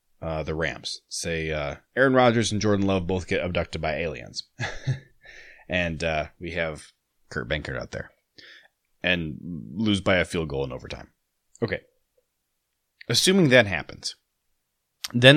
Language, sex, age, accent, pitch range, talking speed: English, male, 30-49, American, 85-115 Hz, 140 wpm